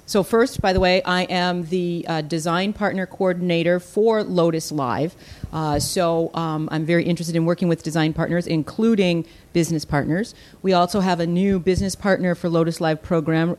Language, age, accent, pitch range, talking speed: English, 40-59, American, 165-190 Hz, 175 wpm